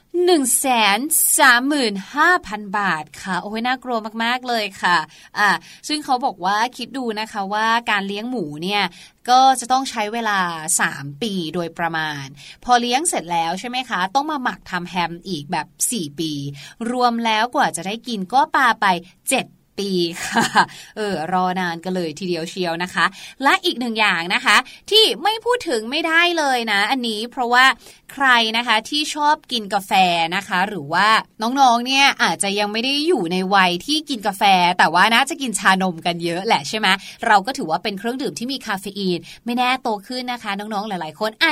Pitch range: 185-260 Hz